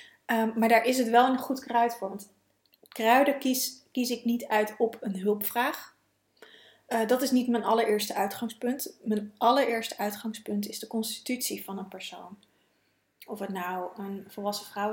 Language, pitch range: Dutch, 200-235 Hz